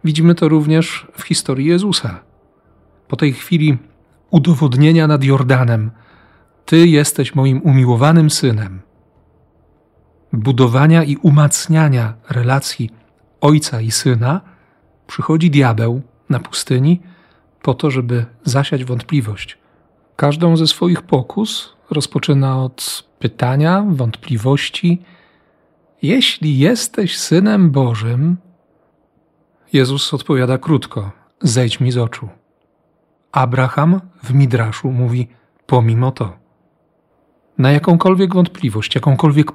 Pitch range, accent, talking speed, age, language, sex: 125-160 Hz, native, 95 wpm, 40-59, Polish, male